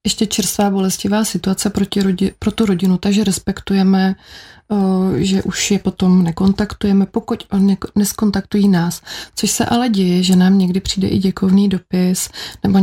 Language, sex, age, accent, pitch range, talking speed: Czech, female, 30-49, native, 190-210 Hz, 150 wpm